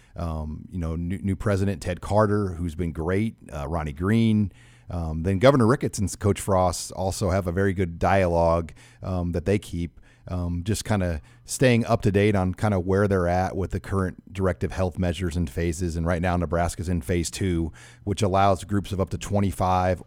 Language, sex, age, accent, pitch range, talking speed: English, male, 40-59, American, 90-105 Hz, 200 wpm